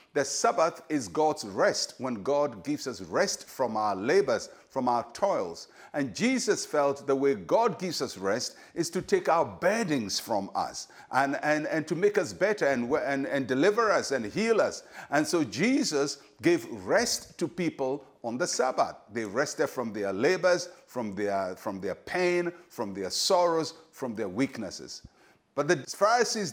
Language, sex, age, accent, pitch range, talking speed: English, male, 50-69, Nigerian, 115-175 Hz, 165 wpm